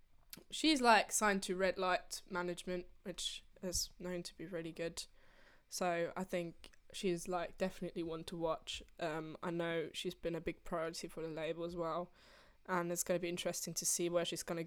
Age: 10-29